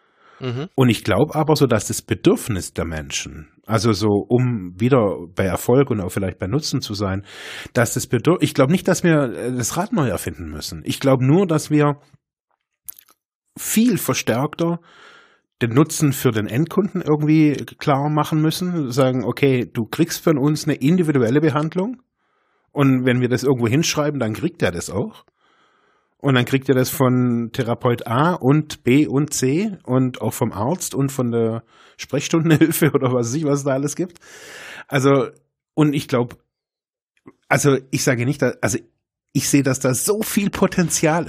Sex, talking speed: male, 170 wpm